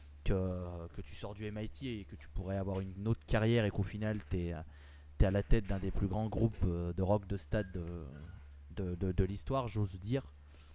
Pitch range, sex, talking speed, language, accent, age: 95-120 Hz, male, 210 wpm, French, French, 20-39